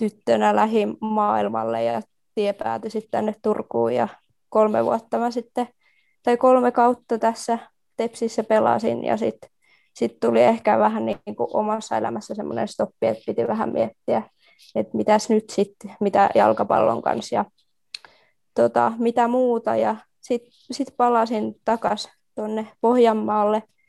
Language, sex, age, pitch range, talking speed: Finnish, female, 20-39, 200-235 Hz, 130 wpm